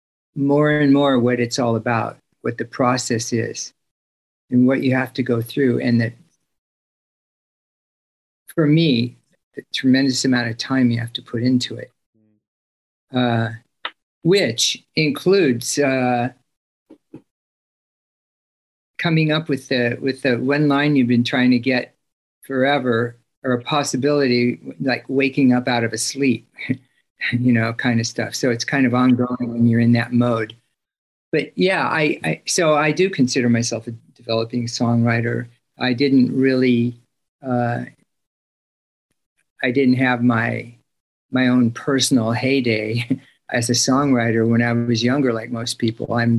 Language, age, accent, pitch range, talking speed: English, 50-69, American, 115-130 Hz, 145 wpm